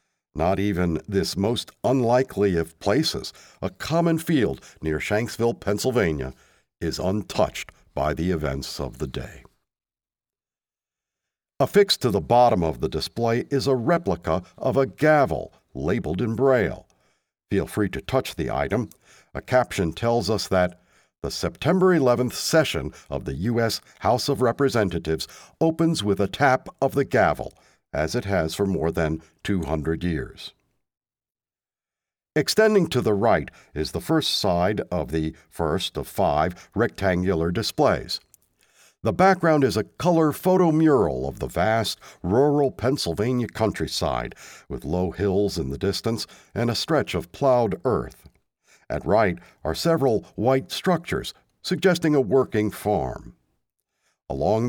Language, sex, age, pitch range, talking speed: English, male, 60-79, 90-135 Hz, 135 wpm